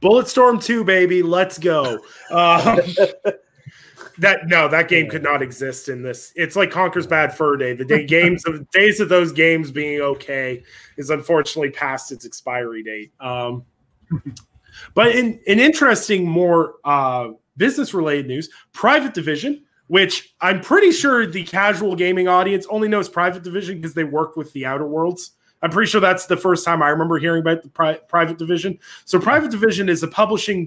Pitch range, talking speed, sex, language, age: 155-205 Hz, 170 wpm, male, English, 20-39